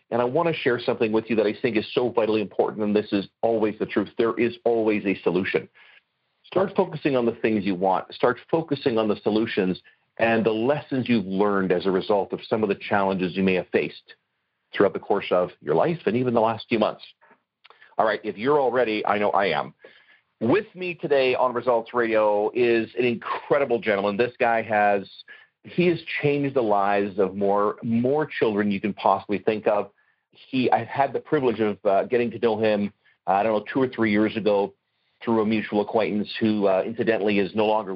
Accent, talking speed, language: American, 210 wpm, English